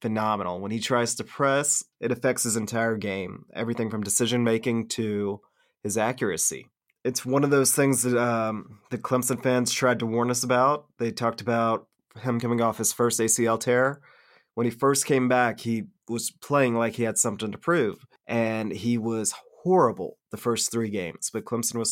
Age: 30-49